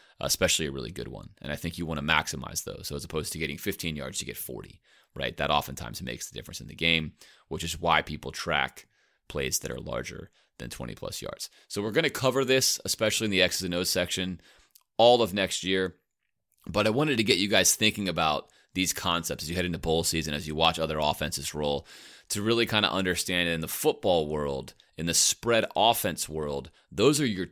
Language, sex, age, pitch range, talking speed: English, male, 30-49, 75-100 Hz, 220 wpm